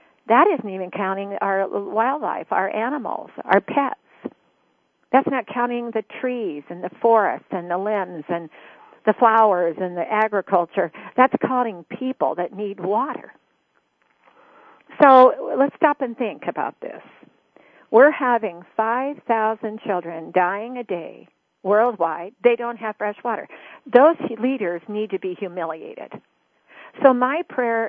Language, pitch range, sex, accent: English, 195-245 Hz, female, American